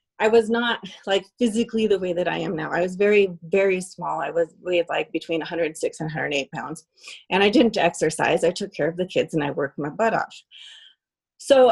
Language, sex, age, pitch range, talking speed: English, female, 30-49, 170-220 Hz, 215 wpm